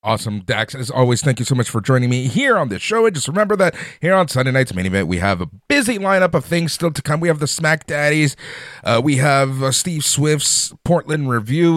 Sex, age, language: male, 30-49, English